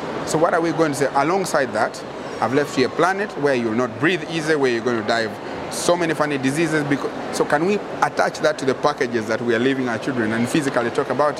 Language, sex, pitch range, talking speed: English, male, 135-175 Hz, 255 wpm